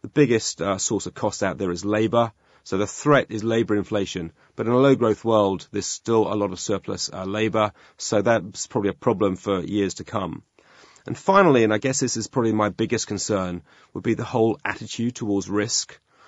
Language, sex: English, male